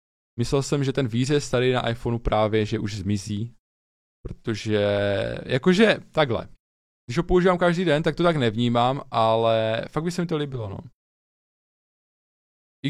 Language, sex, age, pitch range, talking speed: Czech, male, 20-39, 105-130 Hz, 155 wpm